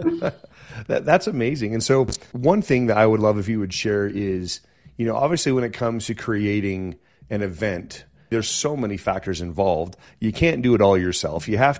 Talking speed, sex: 195 wpm, male